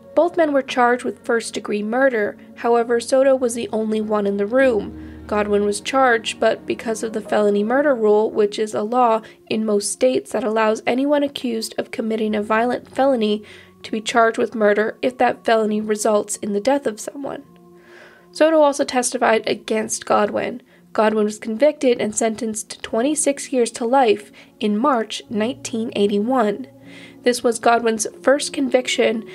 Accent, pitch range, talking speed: American, 210-255 Hz, 160 wpm